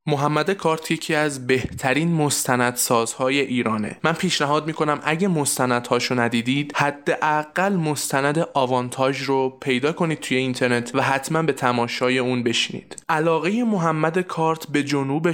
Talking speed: 125 wpm